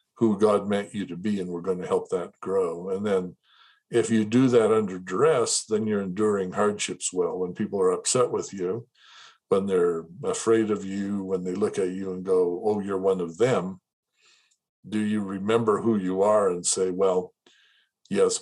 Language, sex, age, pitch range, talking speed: English, male, 60-79, 90-115 Hz, 190 wpm